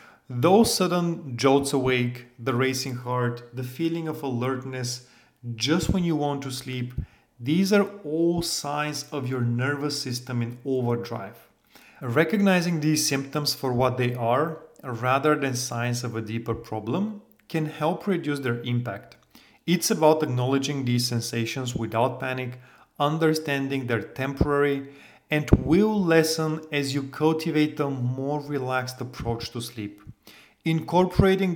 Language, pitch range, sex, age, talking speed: English, 125-150 Hz, male, 40-59, 130 wpm